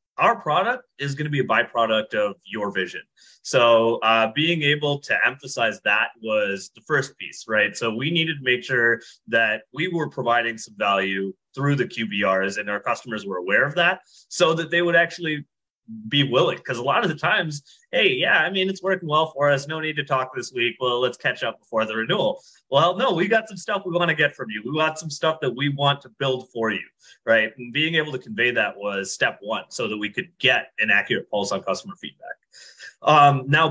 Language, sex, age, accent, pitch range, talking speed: English, male, 30-49, American, 110-155 Hz, 225 wpm